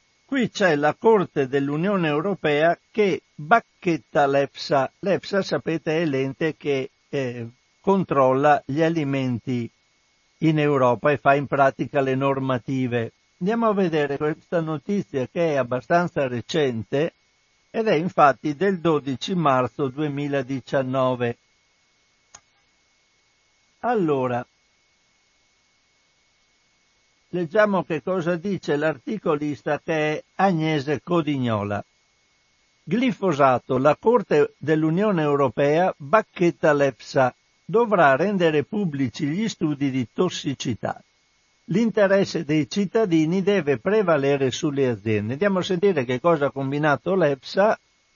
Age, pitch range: 60-79, 135-185 Hz